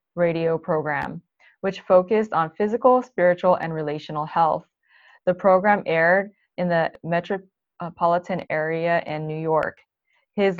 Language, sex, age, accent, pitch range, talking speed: English, female, 20-39, American, 165-200 Hz, 120 wpm